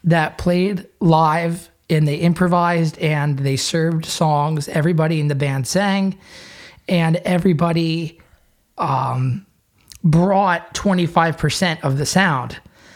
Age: 20-39